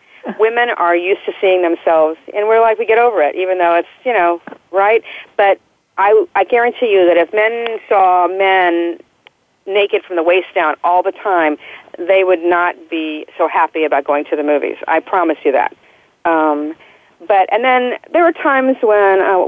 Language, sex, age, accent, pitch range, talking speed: English, female, 40-59, American, 170-215 Hz, 190 wpm